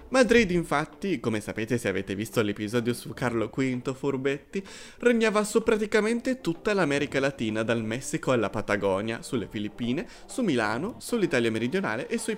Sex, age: male, 30-49